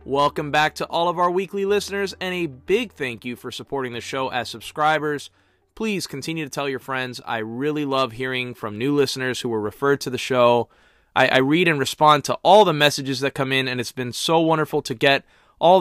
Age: 20-39